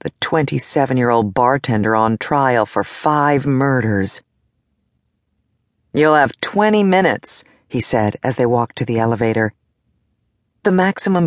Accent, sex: American, female